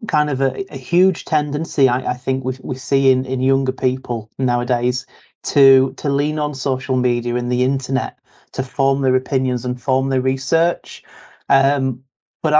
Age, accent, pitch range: 30-49, British, 125-140 Hz